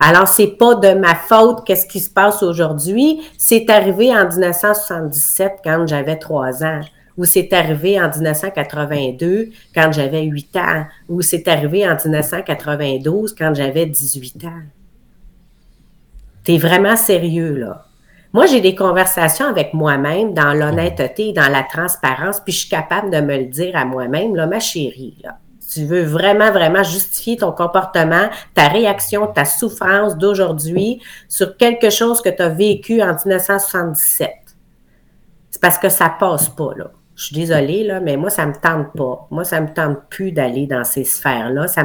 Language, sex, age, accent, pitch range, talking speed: French, female, 30-49, Canadian, 150-195 Hz, 165 wpm